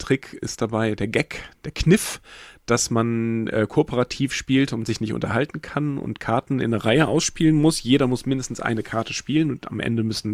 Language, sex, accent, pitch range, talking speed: German, male, German, 110-135 Hz, 195 wpm